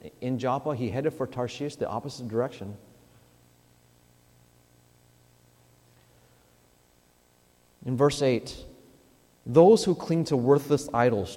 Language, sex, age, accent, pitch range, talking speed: English, male, 40-59, American, 95-135 Hz, 95 wpm